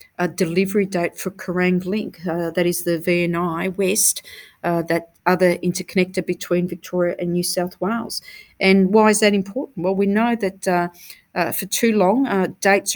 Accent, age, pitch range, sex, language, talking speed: Australian, 40-59, 180-200 Hz, female, English, 175 wpm